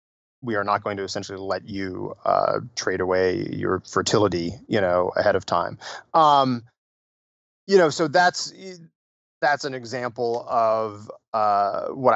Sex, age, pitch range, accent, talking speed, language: male, 30-49, 105-130 Hz, American, 145 wpm, English